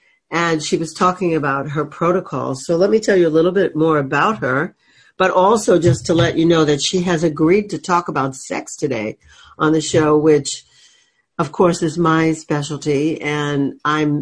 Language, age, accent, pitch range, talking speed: English, 60-79, American, 150-175 Hz, 190 wpm